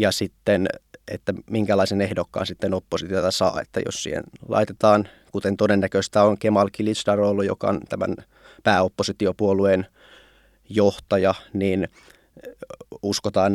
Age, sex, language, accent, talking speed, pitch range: 20-39, male, Finnish, native, 105 wpm, 95-105 Hz